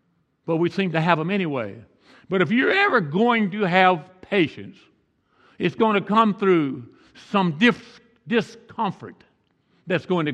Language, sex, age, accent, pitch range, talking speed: English, male, 60-79, American, 175-225 Hz, 145 wpm